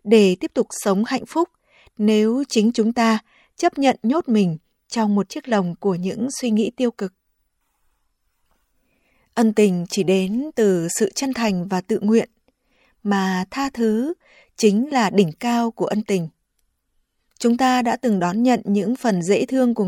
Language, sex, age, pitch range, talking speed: Vietnamese, female, 20-39, 195-245 Hz, 170 wpm